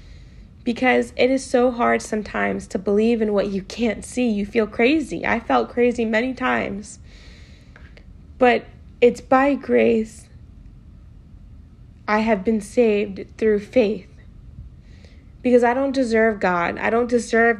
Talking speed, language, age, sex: 135 wpm, English, 20-39, female